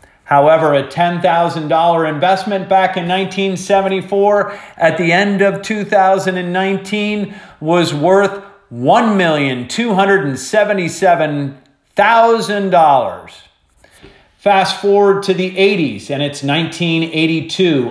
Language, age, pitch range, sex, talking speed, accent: English, 40-59, 155-195 Hz, male, 75 wpm, American